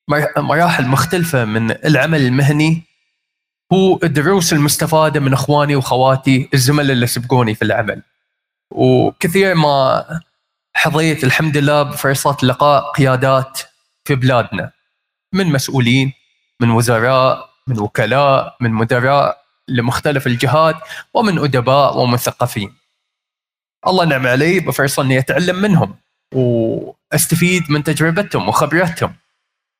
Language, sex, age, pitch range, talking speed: Arabic, male, 20-39, 130-160 Hz, 100 wpm